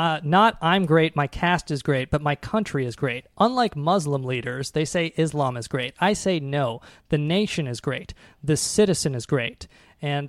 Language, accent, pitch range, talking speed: English, American, 135-165 Hz, 190 wpm